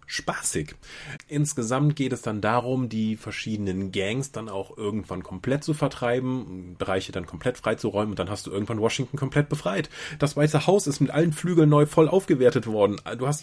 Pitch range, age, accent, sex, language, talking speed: 110-150 Hz, 30-49, German, male, German, 180 wpm